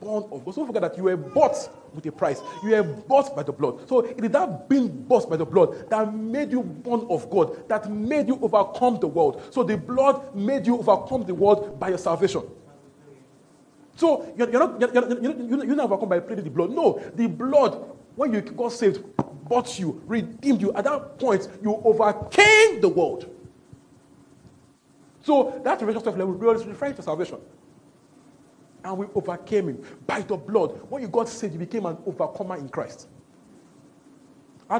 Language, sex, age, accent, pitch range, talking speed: English, male, 40-59, Nigerian, 180-250 Hz, 170 wpm